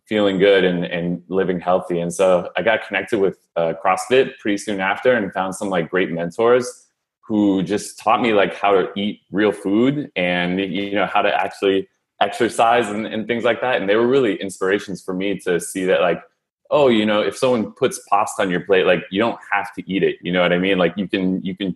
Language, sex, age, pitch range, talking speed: English, male, 20-39, 90-110 Hz, 230 wpm